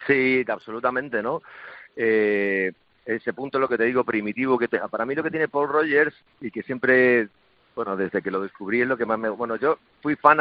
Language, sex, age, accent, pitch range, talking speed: Spanish, male, 40-59, Spanish, 110-140 Hz, 220 wpm